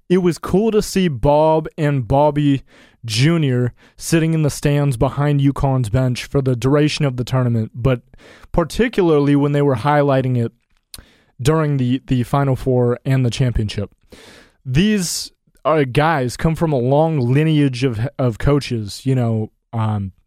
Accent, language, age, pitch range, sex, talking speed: American, English, 20-39, 125-150 Hz, male, 150 wpm